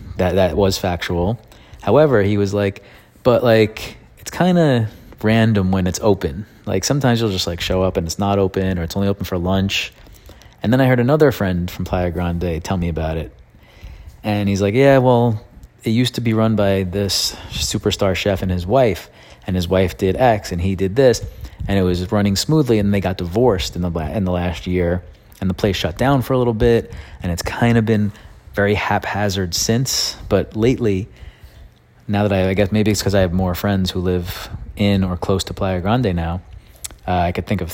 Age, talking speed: 30-49, 210 wpm